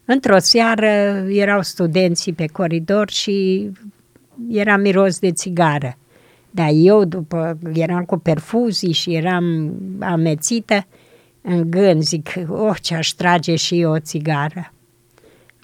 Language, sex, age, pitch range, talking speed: Romanian, female, 60-79, 175-225 Hz, 120 wpm